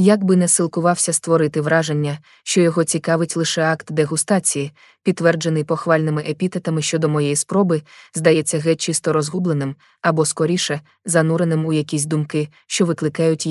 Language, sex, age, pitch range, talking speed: Russian, female, 20-39, 155-180 Hz, 135 wpm